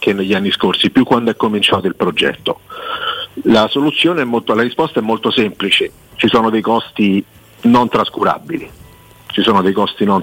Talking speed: 175 wpm